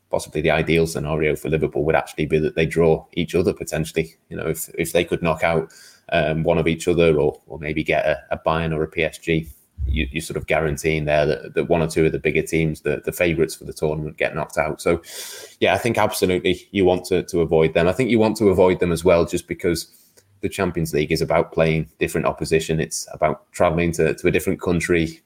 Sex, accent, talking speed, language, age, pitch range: male, British, 240 wpm, English, 20-39, 80-85 Hz